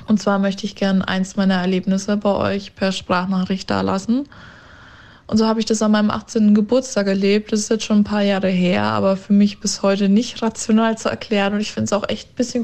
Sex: female